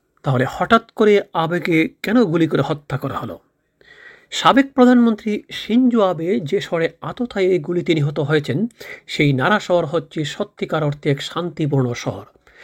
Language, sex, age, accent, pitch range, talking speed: Bengali, male, 40-59, native, 150-200 Hz, 140 wpm